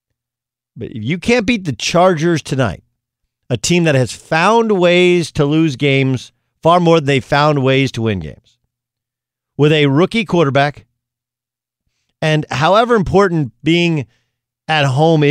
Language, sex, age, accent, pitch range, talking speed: English, male, 50-69, American, 120-160 Hz, 135 wpm